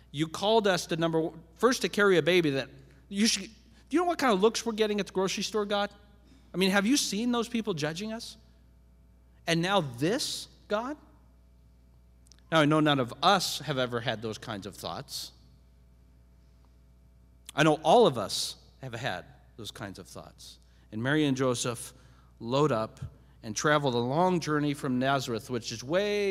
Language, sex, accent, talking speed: English, male, American, 180 wpm